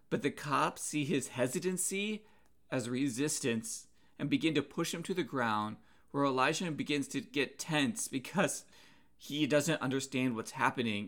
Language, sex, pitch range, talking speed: English, male, 120-155 Hz, 150 wpm